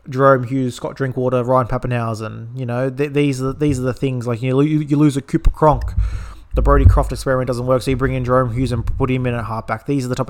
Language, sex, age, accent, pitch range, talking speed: English, male, 20-39, Australian, 115-150 Hz, 245 wpm